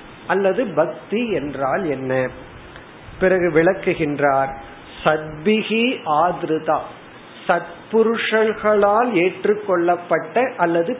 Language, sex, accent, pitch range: Tamil, male, native, 155-200 Hz